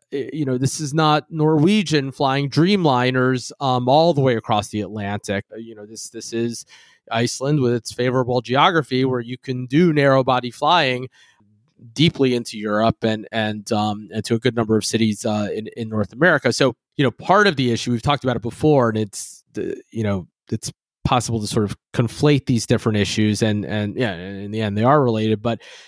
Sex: male